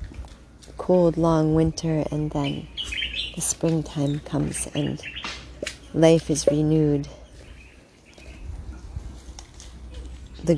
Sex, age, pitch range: female, 40-59, 145-165 Hz